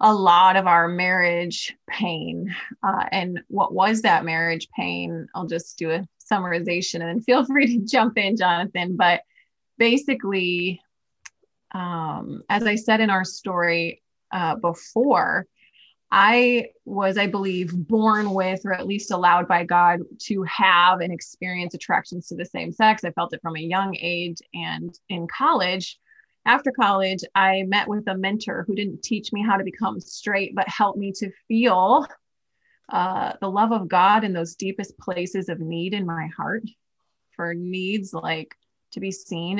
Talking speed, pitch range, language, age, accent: 165 wpm, 175-220 Hz, English, 20-39, American